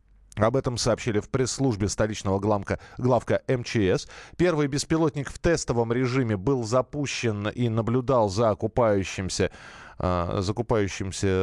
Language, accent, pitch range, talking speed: Russian, native, 115-155 Hz, 105 wpm